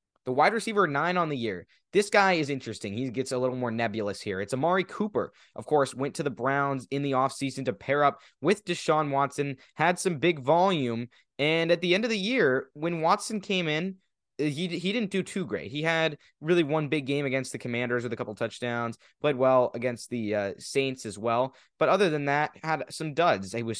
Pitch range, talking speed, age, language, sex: 110-150 Hz, 220 wpm, 20-39, English, male